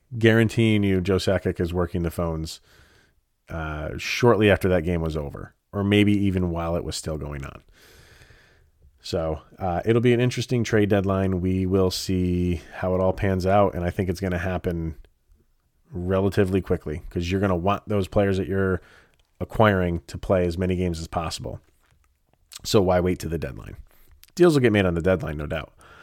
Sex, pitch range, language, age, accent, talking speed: male, 85-105 Hz, English, 30-49, American, 185 wpm